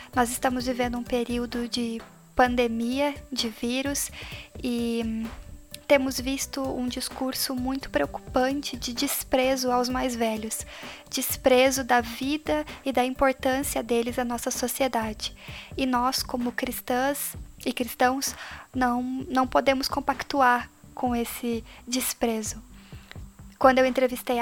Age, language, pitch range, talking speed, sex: 10-29, Portuguese, 235-265 Hz, 115 wpm, female